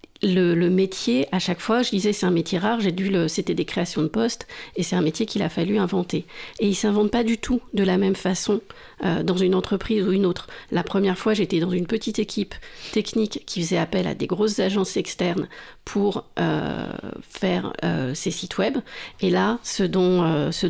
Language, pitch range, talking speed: French, 180-215 Hz, 220 wpm